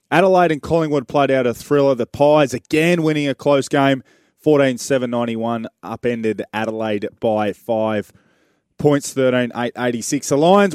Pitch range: 115-145 Hz